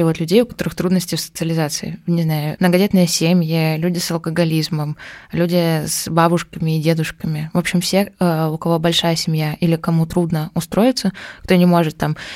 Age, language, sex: 20-39, Russian, female